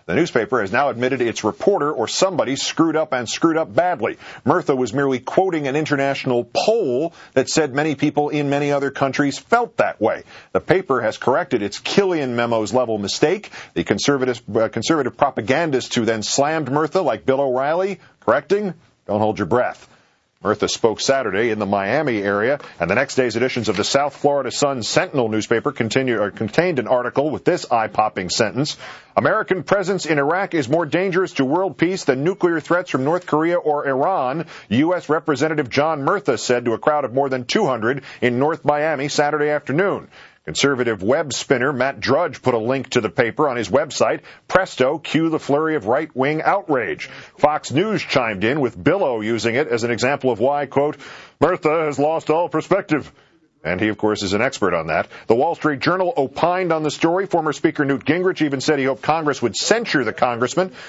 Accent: American